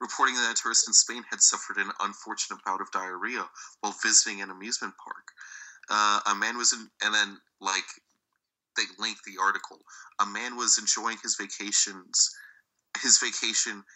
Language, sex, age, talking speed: English, male, 30-49, 165 wpm